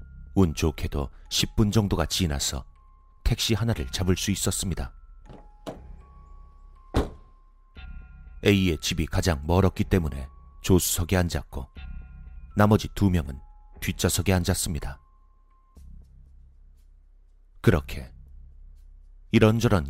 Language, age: Korean, 30-49